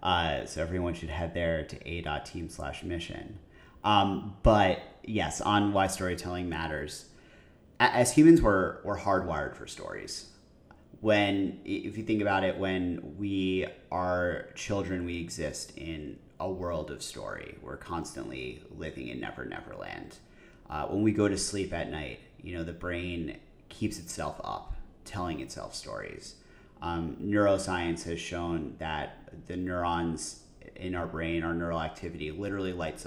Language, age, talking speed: English, 30-49, 145 wpm